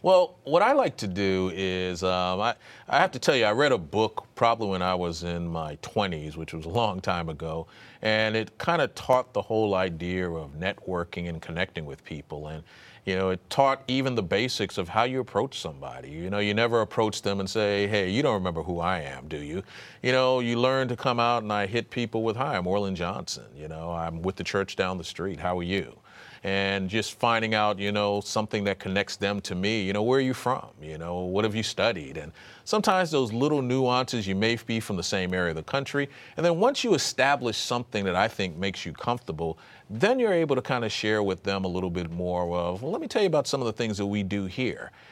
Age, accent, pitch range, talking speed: 40-59, American, 90-120 Hz, 240 wpm